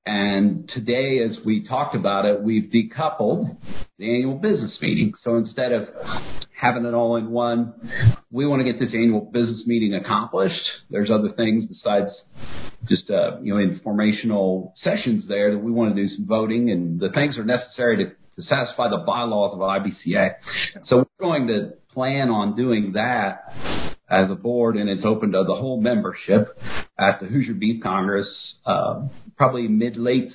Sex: male